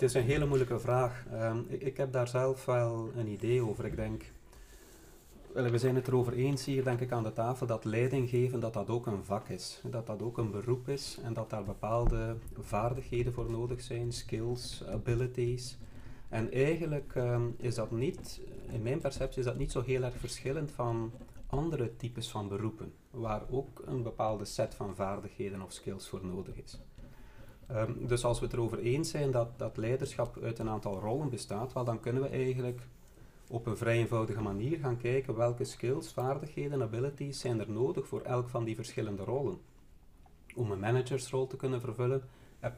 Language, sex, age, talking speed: Dutch, male, 40-59, 190 wpm